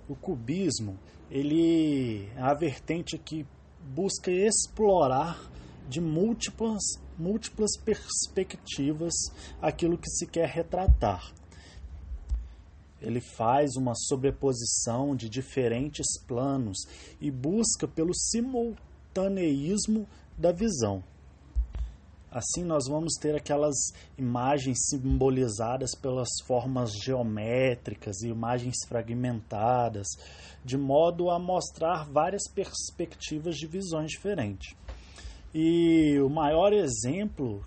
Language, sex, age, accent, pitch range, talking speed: English, male, 20-39, Brazilian, 110-165 Hz, 90 wpm